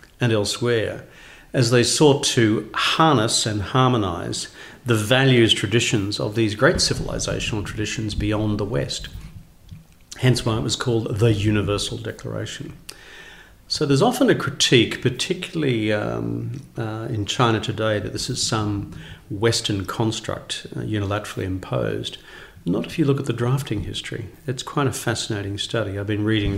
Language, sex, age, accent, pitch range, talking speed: English, male, 50-69, Australian, 105-125 Hz, 145 wpm